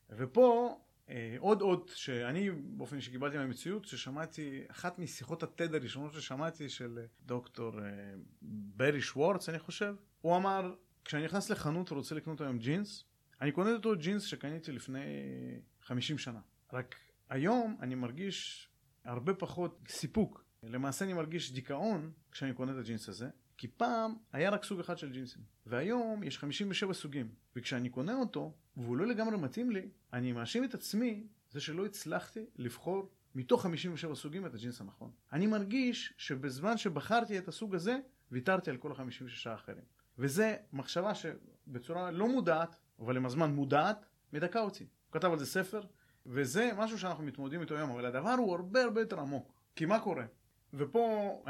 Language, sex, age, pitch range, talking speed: Hebrew, male, 30-49, 130-195 Hz, 155 wpm